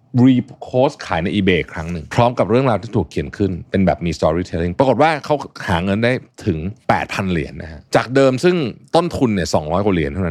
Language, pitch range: Thai, 90-125 Hz